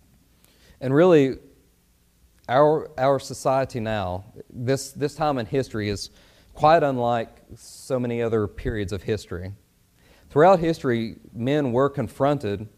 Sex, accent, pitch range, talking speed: male, American, 90-125 Hz, 115 wpm